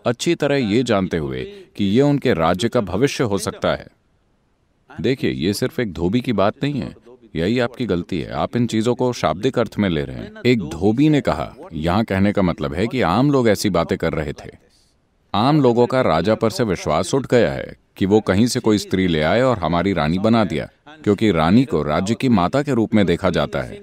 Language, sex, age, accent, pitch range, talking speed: English, male, 40-59, Indian, 95-130 Hz, 160 wpm